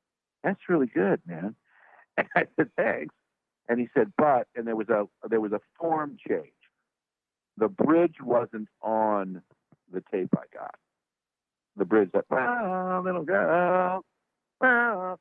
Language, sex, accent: English, male, American